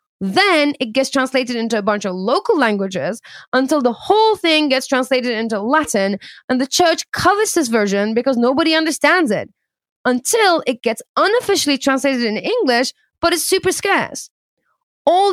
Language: English